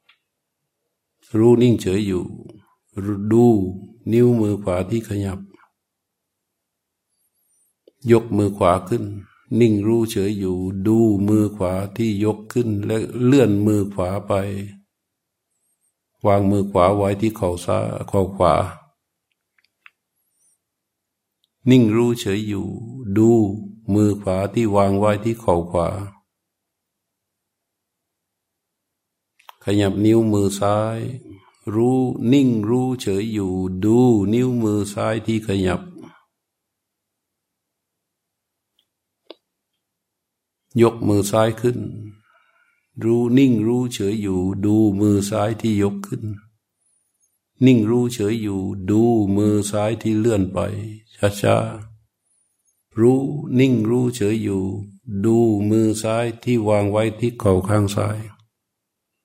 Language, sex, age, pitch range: Thai, male, 60-79, 100-115 Hz